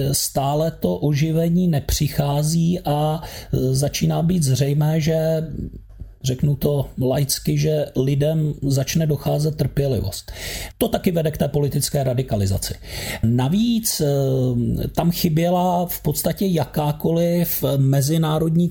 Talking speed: 100 wpm